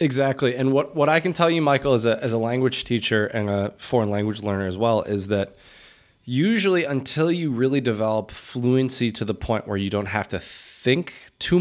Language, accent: English, American